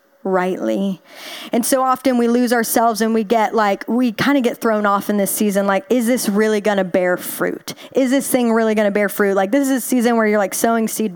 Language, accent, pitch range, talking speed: English, American, 205-265 Hz, 245 wpm